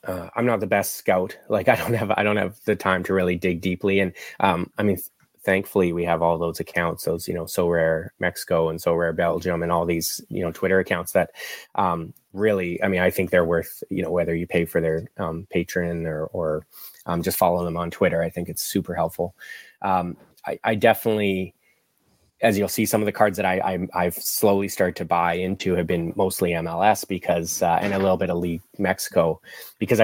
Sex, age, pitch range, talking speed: male, 20-39, 85-100 Hz, 225 wpm